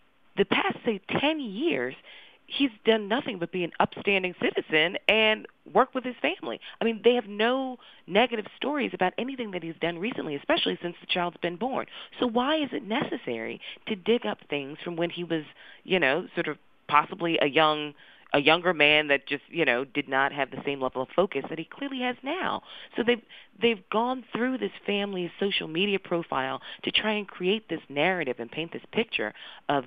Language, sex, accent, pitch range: English, female, American, 150-240 Hz